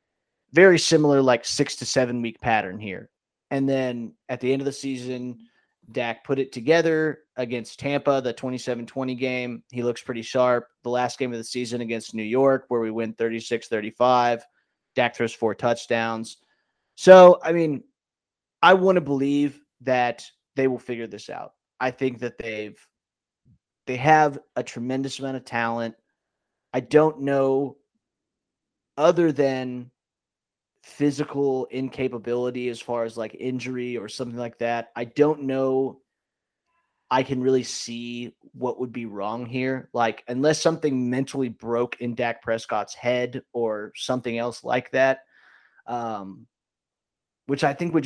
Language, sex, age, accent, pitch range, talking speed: English, male, 30-49, American, 115-135 Hz, 150 wpm